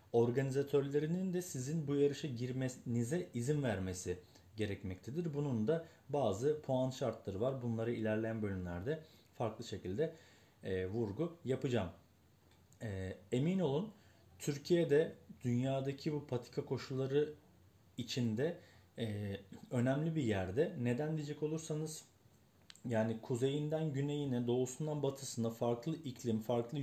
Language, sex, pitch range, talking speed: Turkish, male, 110-140 Hz, 105 wpm